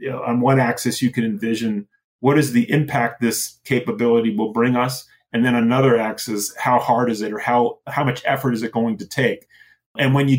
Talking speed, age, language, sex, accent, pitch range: 220 wpm, 30-49, English, male, American, 120-140 Hz